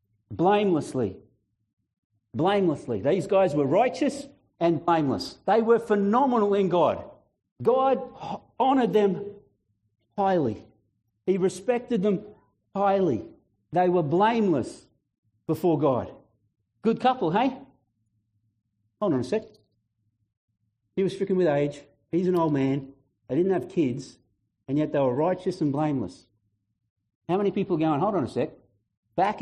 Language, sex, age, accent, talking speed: English, male, 50-69, Australian, 130 wpm